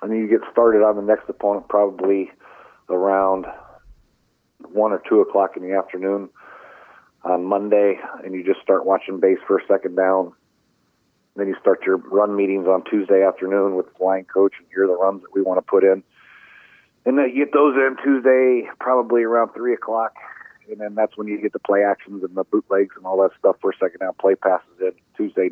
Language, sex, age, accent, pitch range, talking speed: English, male, 40-59, American, 95-105 Hz, 205 wpm